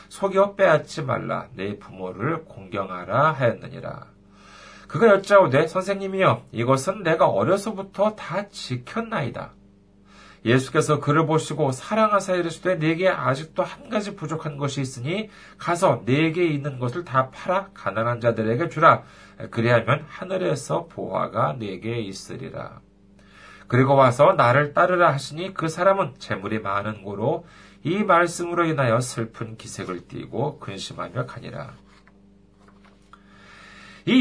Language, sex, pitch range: Korean, male, 115-180 Hz